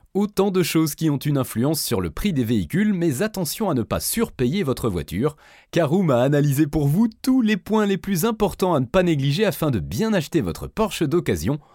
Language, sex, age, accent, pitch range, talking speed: French, male, 30-49, French, 130-200 Hz, 215 wpm